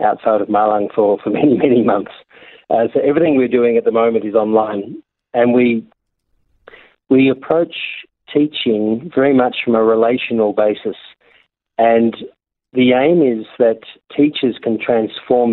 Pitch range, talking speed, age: 110-125 Hz, 145 wpm, 40-59